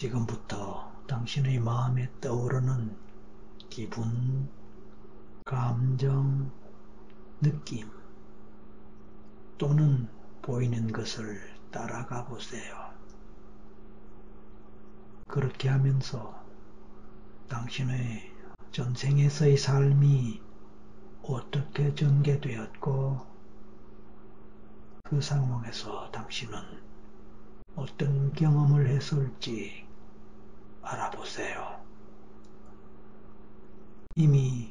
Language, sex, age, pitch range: Korean, male, 60-79, 120-145 Hz